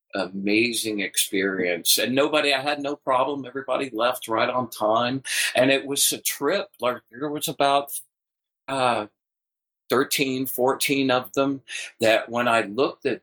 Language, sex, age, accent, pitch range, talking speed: English, male, 50-69, American, 105-135 Hz, 145 wpm